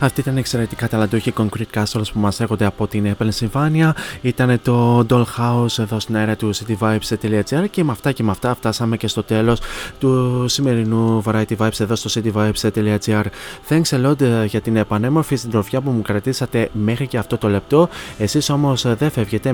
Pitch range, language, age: 105-125 Hz, Greek, 20-39